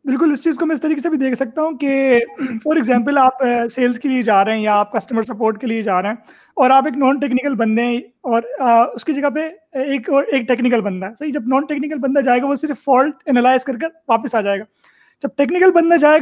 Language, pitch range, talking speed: Urdu, 240-295 Hz, 250 wpm